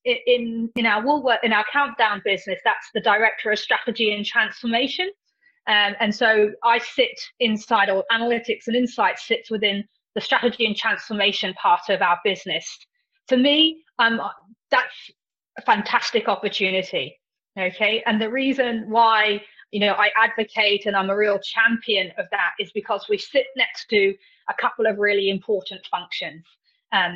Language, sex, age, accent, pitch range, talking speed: English, female, 30-49, British, 200-255 Hz, 160 wpm